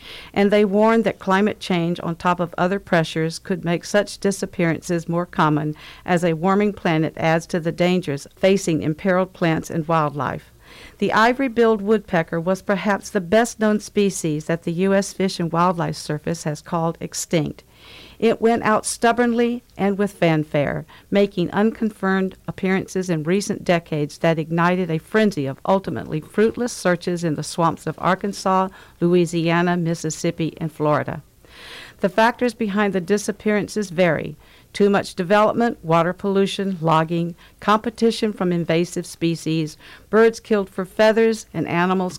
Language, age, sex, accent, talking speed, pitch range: English, 50-69, female, American, 140 wpm, 165-200 Hz